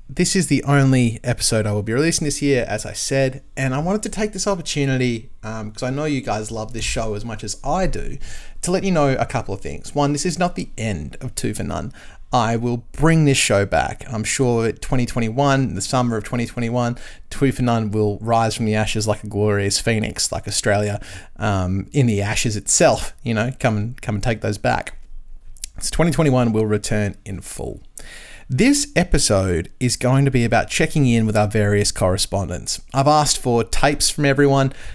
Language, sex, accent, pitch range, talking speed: English, male, Australian, 105-135 Hz, 205 wpm